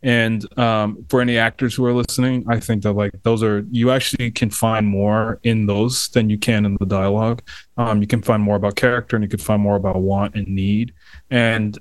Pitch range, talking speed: 105-125 Hz, 225 wpm